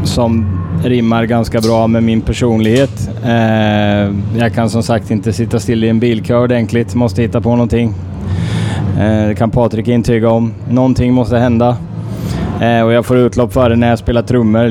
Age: 10-29